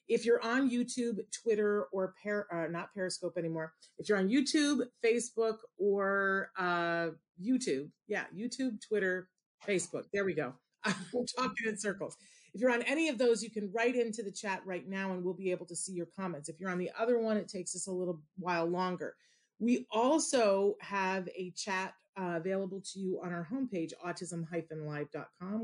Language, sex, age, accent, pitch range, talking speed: English, female, 40-59, American, 175-220 Hz, 180 wpm